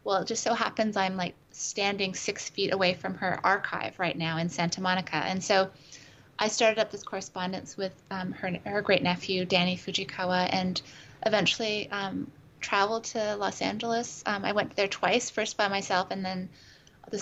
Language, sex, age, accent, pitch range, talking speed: English, female, 20-39, American, 180-200 Hz, 180 wpm